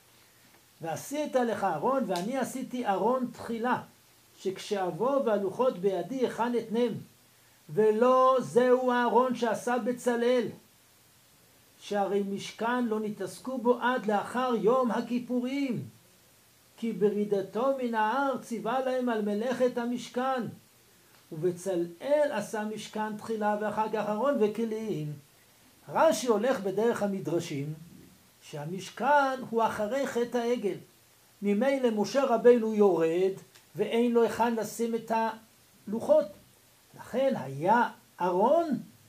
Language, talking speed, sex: Hebrew, 100 wpm, male